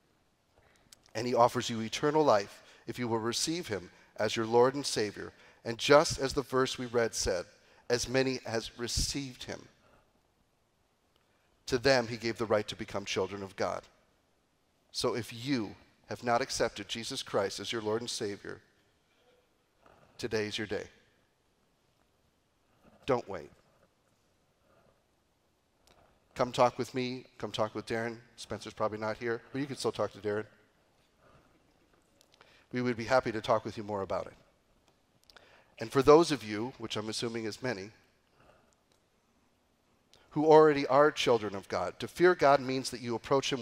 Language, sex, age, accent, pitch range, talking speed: English, male, 40-59, American, 110-130 Hz, 155 wpm